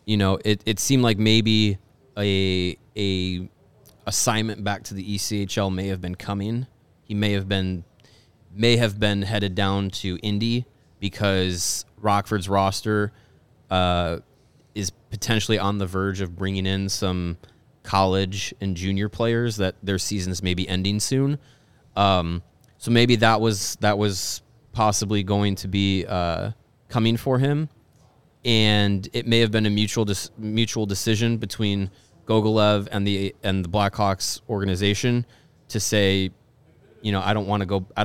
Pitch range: 95-110 Hz